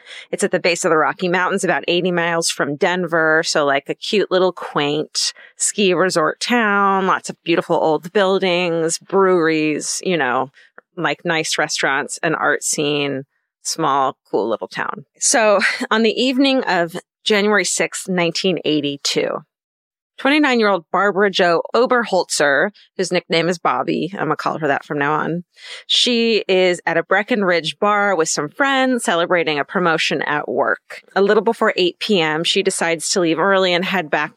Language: English